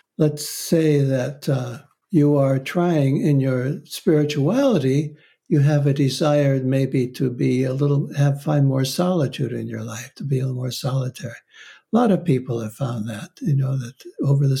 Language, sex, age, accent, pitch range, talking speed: English, male, 60-79, American, 135-160 Hz, 180 wpm